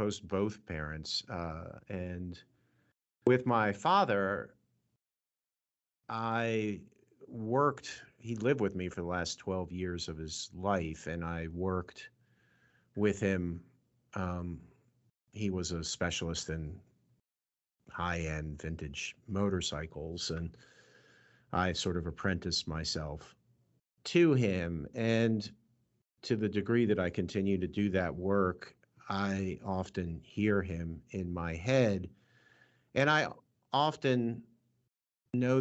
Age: 50-69